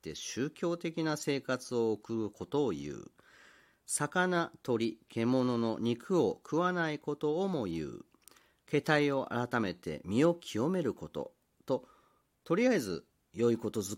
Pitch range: 105-165 Hz